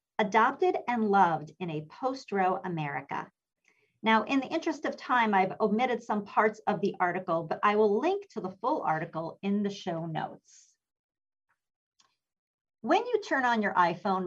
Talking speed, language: 165 wpm, English